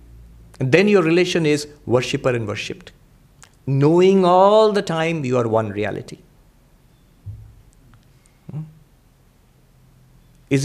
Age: 50-69